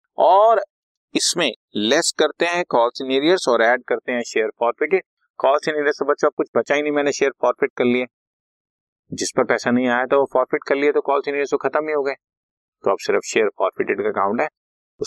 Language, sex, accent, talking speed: Hindi, male, native, 90 wpm